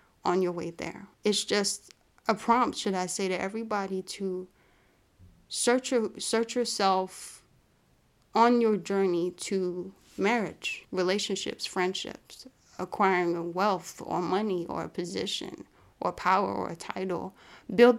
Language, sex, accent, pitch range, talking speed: English, female, American, 180-205 Hz, 130 wpm